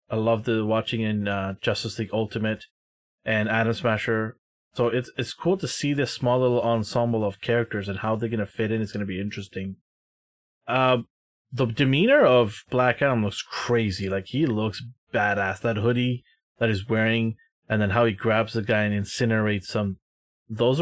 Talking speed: 185 wpm